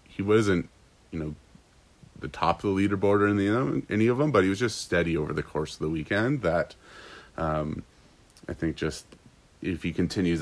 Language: English